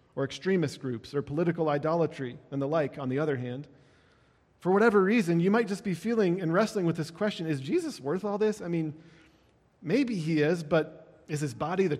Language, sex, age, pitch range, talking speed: English, male, 40-59, 130-165 Hz, 205 wpm